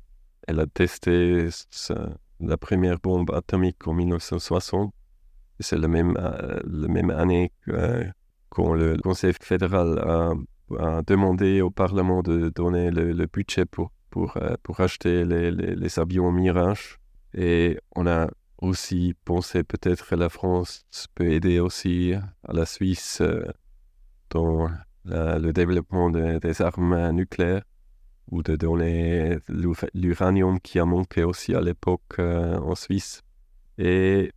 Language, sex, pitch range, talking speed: French, male, 85-95 Hz, 125 wpm